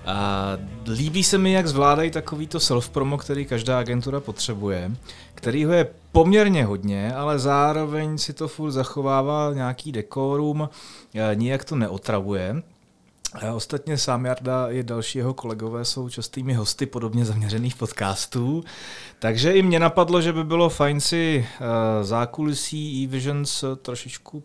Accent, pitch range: native, 105-140 Hz